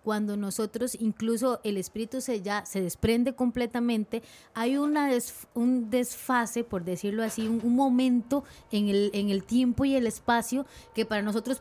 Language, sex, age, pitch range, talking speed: Spanish, female, 20-39, 205-255 Hz, 165 wpm